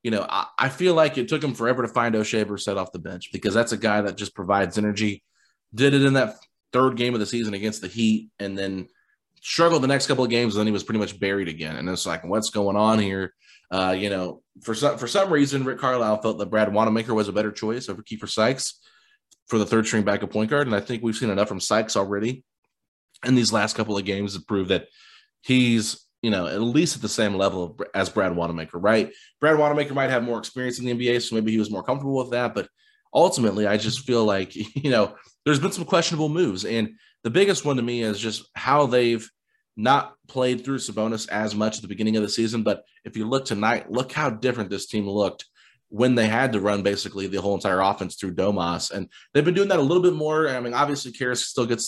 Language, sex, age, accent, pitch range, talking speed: English, male, 30-49, American, 105-130 Hz, 245 wpm